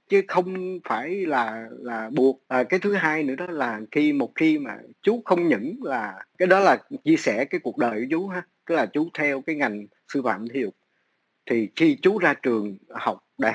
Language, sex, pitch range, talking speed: Vietnamese, male, 115-175 Hz, 215 wpm